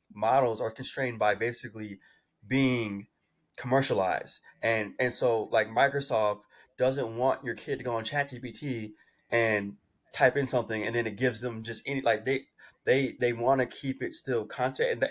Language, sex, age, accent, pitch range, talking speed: English, male, 20-39, American, 105-125 Hz, 165 wpm